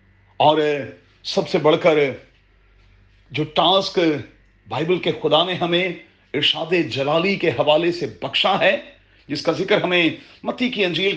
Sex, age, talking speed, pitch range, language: male, 40-59, 140 wpm, 120-170 Hz, Urdu